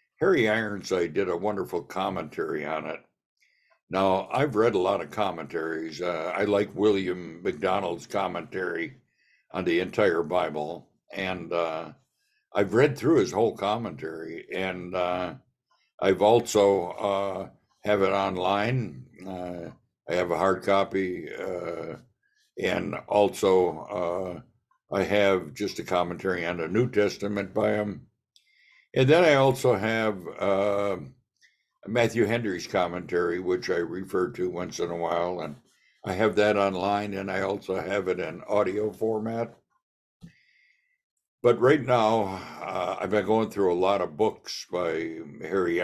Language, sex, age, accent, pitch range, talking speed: English, male, 60-79, American, 90-110 Hz, 140 wpm